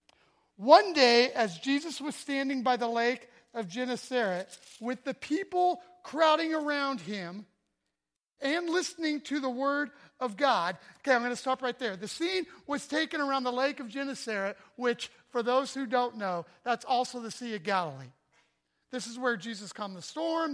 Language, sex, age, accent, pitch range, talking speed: English, male, 40-59, American, 230-290 Hz, 170 wpm